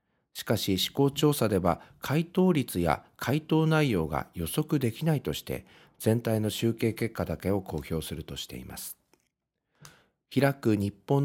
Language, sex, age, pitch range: Japanese, male, 50-69, 90-130 Hz